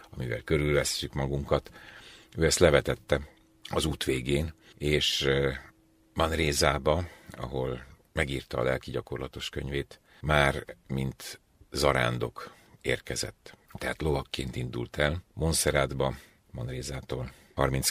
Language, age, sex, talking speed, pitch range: Hungarian, 50-69, male, 90 wpm, 65-80 Hz